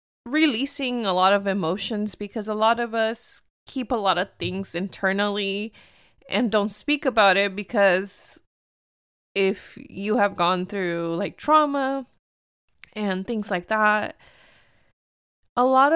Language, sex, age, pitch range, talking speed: English, female, 20-39, 190-245 Hz, 130 wpm